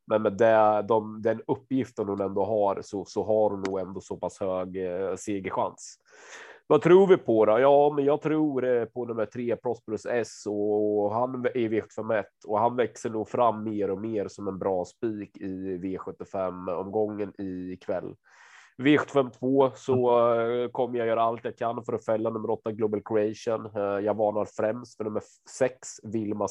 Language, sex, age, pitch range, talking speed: Swedish, male, 30-49, 105-125 Hz, 180 wpm